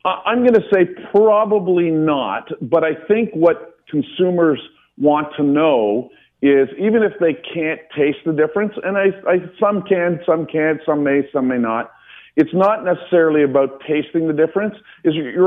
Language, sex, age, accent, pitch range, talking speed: English, male, 40-59, American, 140-175 Hz, 165 wpm